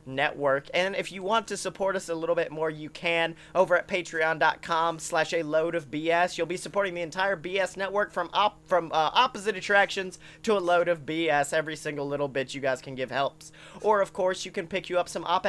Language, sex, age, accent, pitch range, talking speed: English, male, 30-49, American, 160-205 Hz, 230 wpm